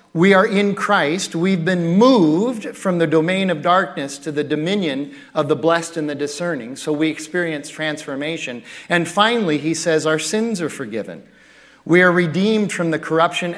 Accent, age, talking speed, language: American, 40-59, 170 wpm, English